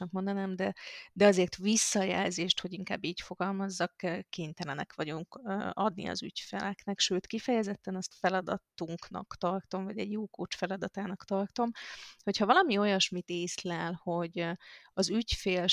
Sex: female